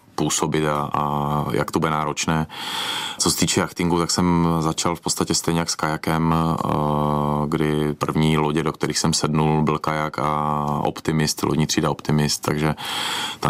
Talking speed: 160 wpm